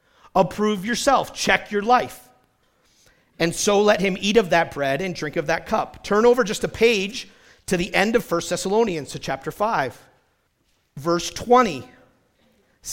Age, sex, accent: 50-69, male, American